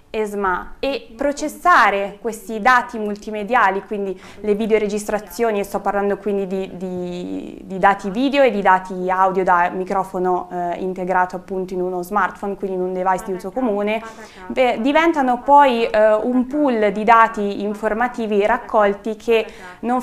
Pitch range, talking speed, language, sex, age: 200-230 Hz, 145 wpm, Italian, female, 20-39